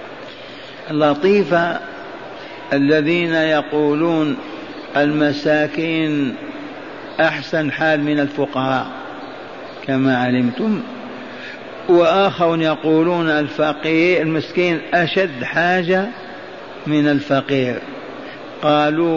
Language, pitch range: Arabic, 150-180 Hz